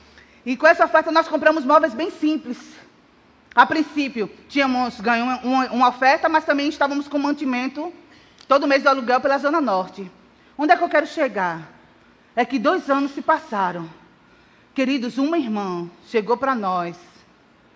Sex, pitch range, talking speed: female, 220-290 Hz, 150 wpm